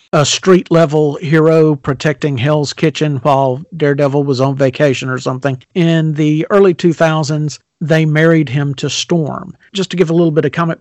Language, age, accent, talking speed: English, 50-69, American, 165 wpm